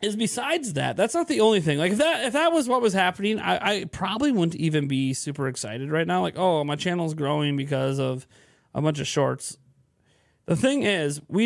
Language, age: English, 30-49